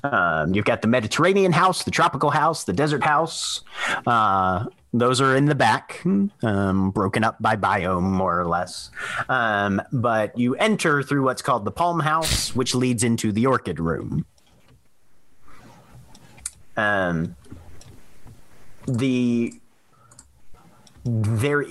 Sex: male